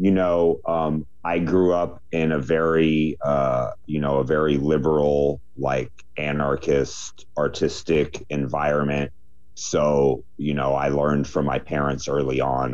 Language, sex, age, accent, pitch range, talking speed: English, male, 30-49, American, 65-80 Hz, 135 wpm